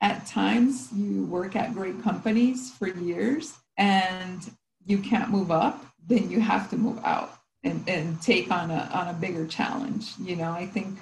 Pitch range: 190-240 Hz